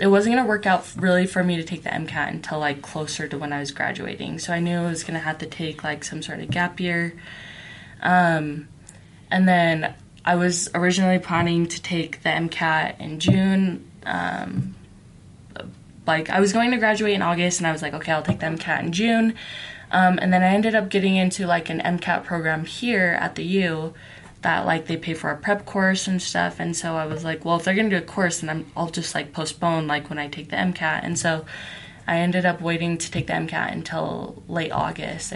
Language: English